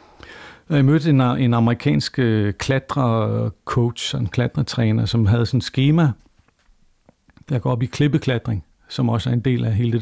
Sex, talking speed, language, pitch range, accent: male, 160 wpm, Danish, 115-145 Hz, native